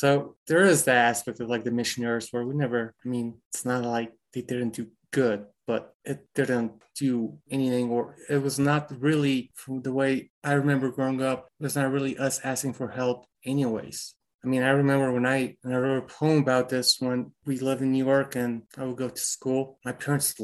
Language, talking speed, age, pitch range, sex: English, 215 wpm, 30-49, 120-135 Hz, male